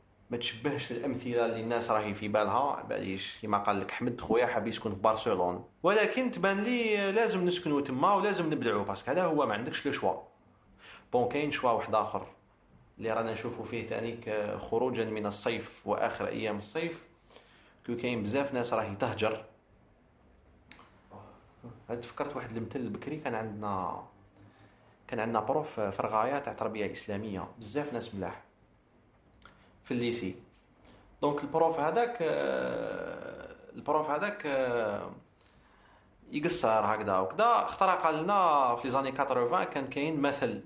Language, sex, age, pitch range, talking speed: Arabic, male, 40-59, 105-165 Hz, 135 wpm